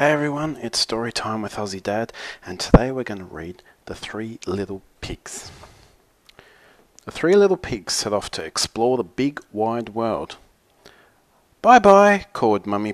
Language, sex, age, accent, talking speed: English, male, 40-59, Australian, 160 wpm